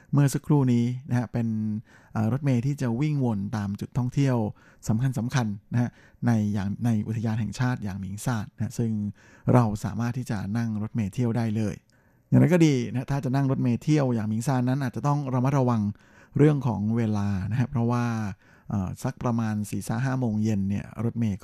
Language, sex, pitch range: Thai, male, 110-130 Hz